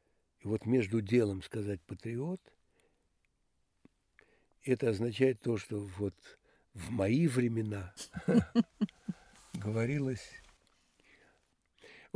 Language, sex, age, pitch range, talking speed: Russian, male, 60-79, 105-130 Hz, 80 wpm